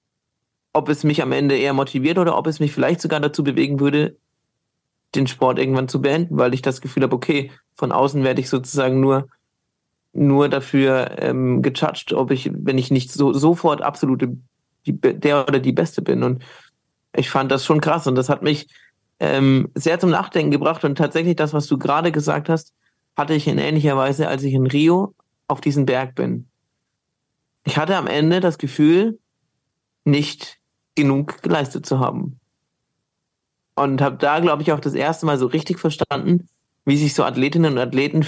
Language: German